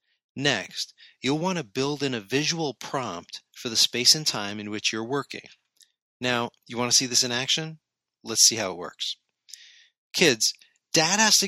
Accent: American